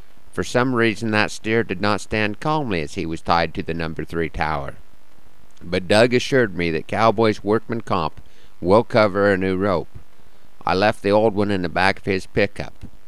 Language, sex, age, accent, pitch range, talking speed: English, male, 50-69, American, 90-110 Hz, 195 wpm